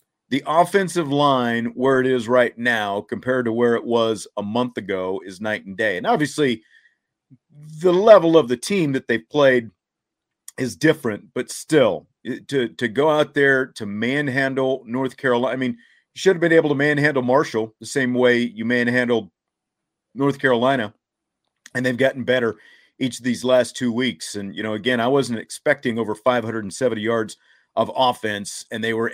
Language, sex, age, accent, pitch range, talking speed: English, male, 50-69, American, 115-145 Hz, 175 wpm